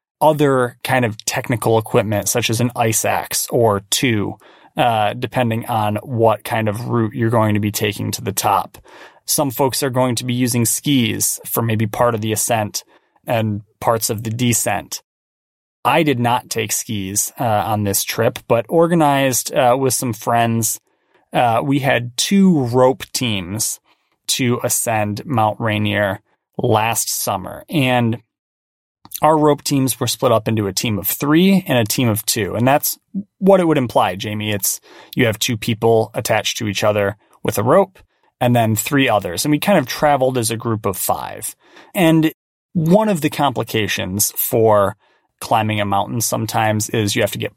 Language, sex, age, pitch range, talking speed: English, male, 20-39, 110-135 Hz, 175 wpm